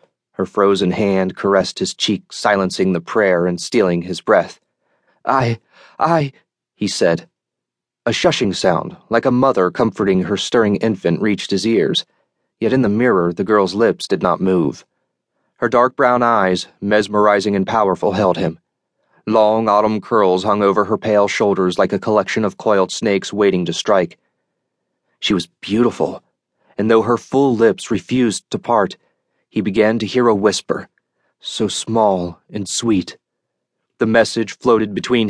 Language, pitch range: English, 90-115 Hz